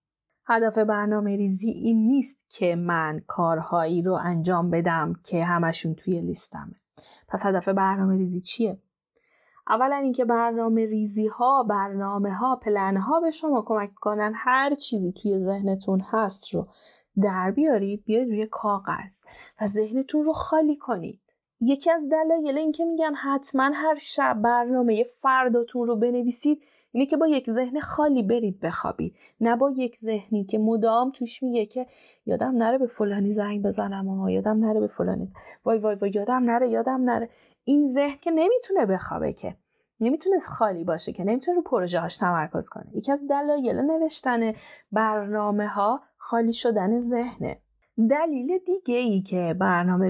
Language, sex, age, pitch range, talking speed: English, female, 30-49, 200-265 Hz, 150 wpm